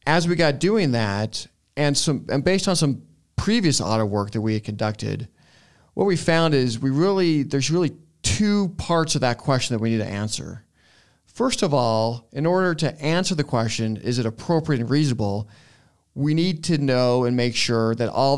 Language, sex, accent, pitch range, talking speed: English, male, American, 110-150 Hz, 195 wpm